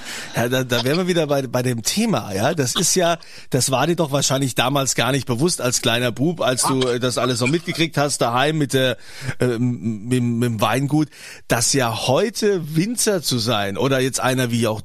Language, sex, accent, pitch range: German, male, German, 130-175 Hz